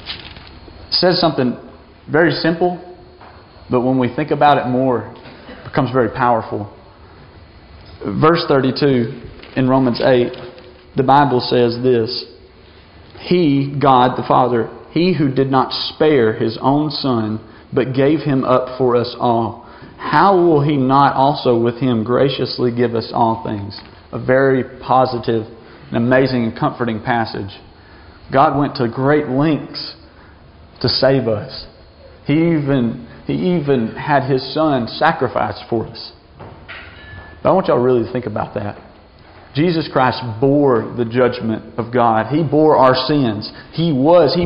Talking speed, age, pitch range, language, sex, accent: 140 wpm, 40-59, 105-135 Hz, English, male, American